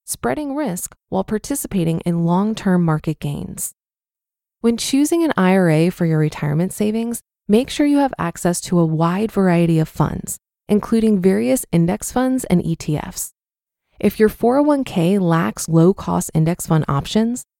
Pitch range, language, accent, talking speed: 165-220 Hz, English, American, 140 wpm